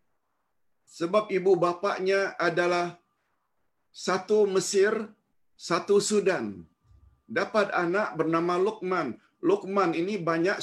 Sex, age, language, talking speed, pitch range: male, 50-69, Malayalam, 85 wpm, 120-180 Hz